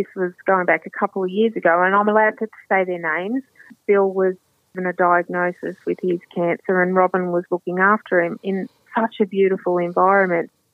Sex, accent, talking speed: female, Australian, 195 wpm